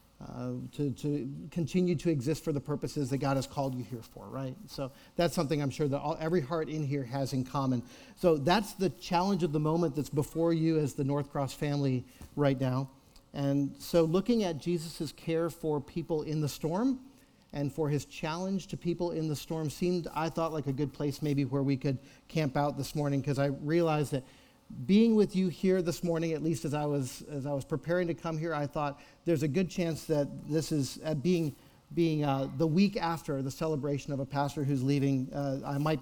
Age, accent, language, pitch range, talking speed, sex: 50-69, American, English, 140-165 Hz, 215 wpm, male